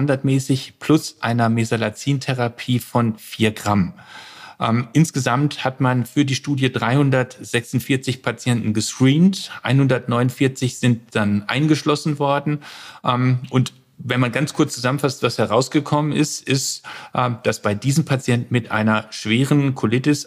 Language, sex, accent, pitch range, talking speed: German, male, German, 115-140 Hz, 120 wpm